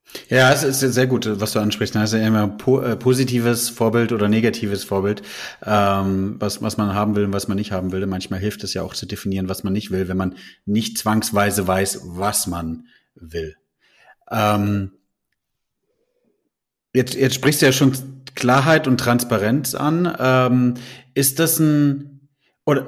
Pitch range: 110-135 Hz